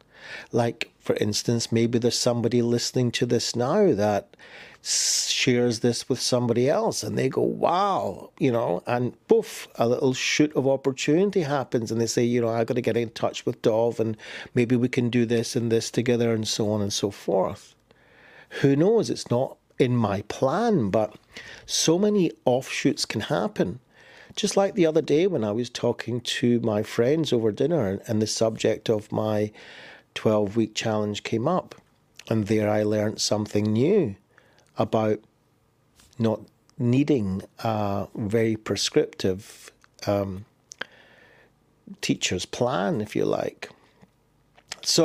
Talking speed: 150 wpm